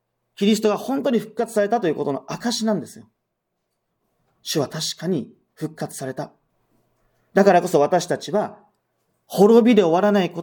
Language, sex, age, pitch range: Japanese, male, 40-59, 175-235 Hz